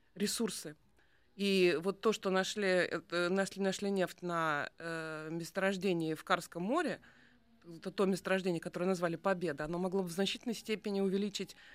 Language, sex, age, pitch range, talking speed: Russian, female, 20-39, 175-220 Hz, 140 wpm